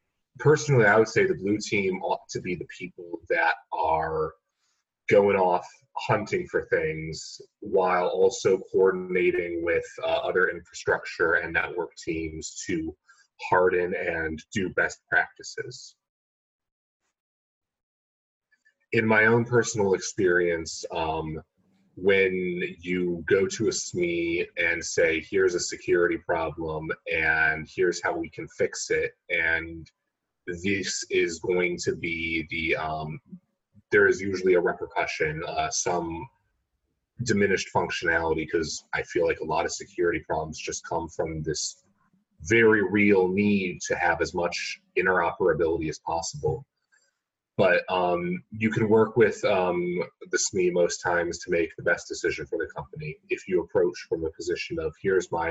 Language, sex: English, male